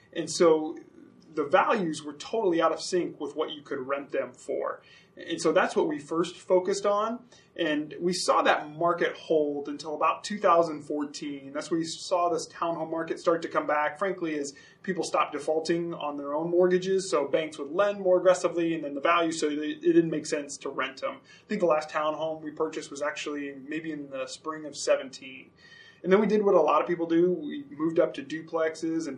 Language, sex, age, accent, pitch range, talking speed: English, male, 20-39, American, 150-180 Hz, 210 wpm